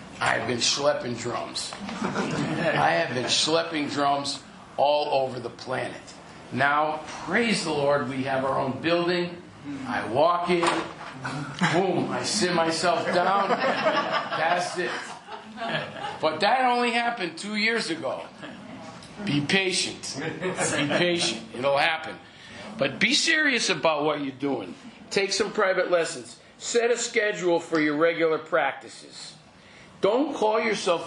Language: English